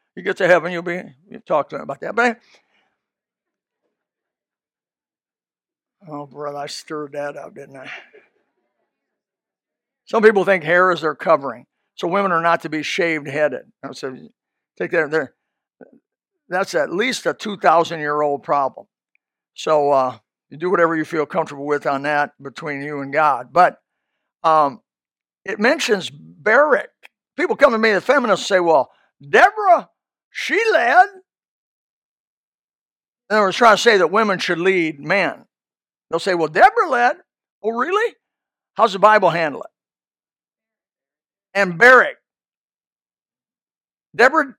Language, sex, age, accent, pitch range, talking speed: English, male, 60-79, American, 145-220 Hz, 135 wpm